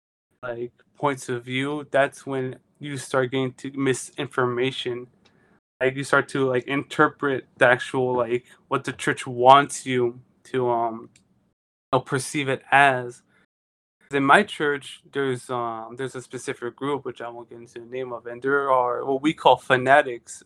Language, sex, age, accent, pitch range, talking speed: English, male, 20-39, American, 120-140 Hz, 165 wpm